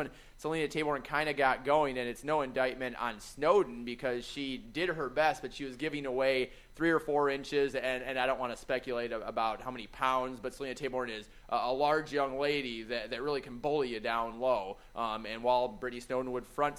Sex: male